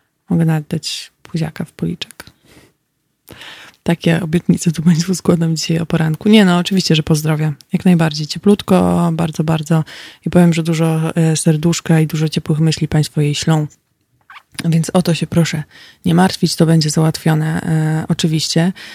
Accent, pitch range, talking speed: native, 160-180 Hz, 150 wpm